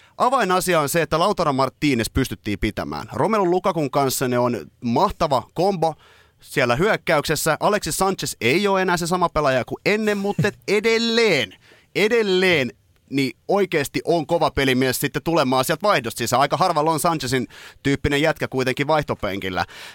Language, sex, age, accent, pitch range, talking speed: Finnish, male, 30-49, native, 125-175 Hz, 145 wpm